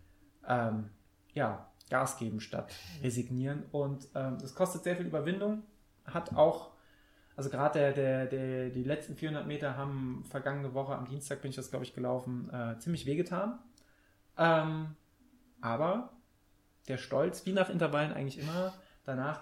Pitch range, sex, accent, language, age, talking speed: 125-145 Hz, male, German, German, 20-39, 150 wpm